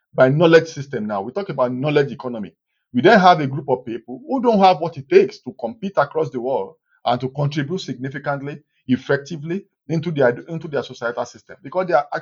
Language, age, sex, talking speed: English, 50-69, male, 200 wpm